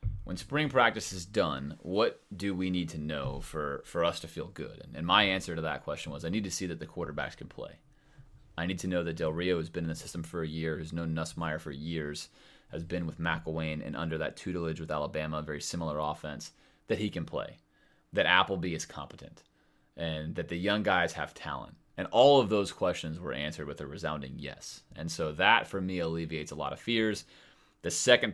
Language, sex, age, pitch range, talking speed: English, male, 30-49, 80-100 Hz, 220 wpm